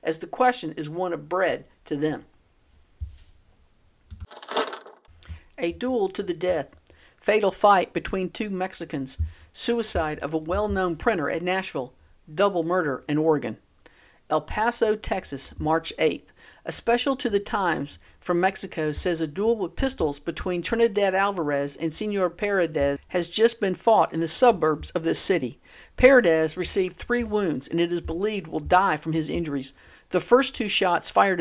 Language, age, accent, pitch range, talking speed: English, 50-69, American, 155-210 Hz, 155 wpm